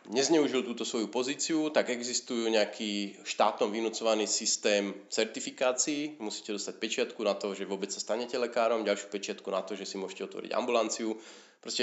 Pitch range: 105-130 Hz